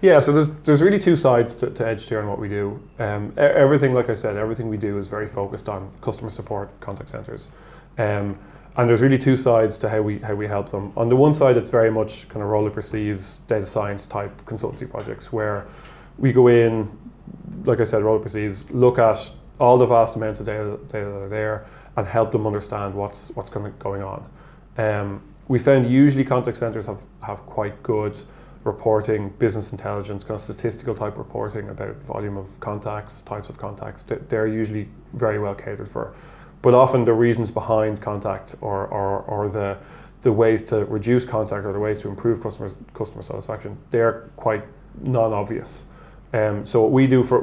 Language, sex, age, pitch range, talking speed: English, male, 20-39, 105-120 Hz, 195 wpm